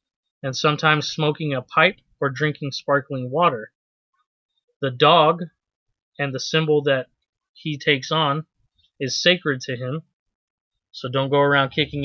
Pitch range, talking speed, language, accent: 135-160 Hz, 135 wpm, English, American